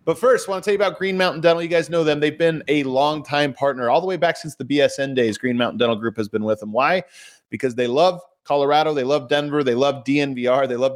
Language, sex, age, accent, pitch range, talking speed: English, male, 20-39, American, 130-170 Hz, 270 wpm